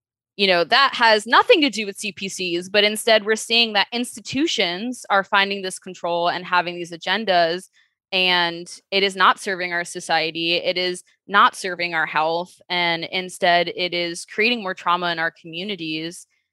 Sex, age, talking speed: female, 20-39, 165 wpm